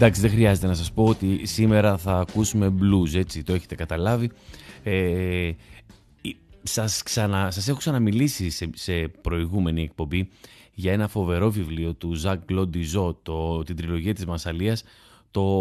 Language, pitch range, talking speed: Greek, 85-115 Hz, 145 wpm